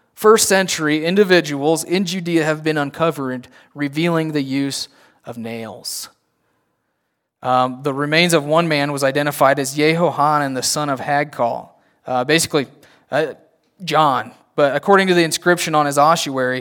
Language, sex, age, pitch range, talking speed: English, male, 20-39, 130-165 Hz, 145 wpm